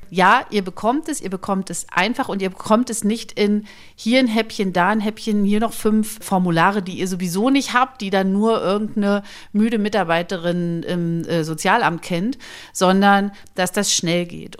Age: 40-59